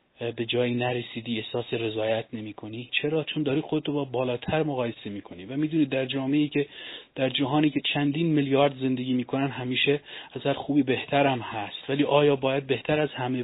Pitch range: 120-145 Hz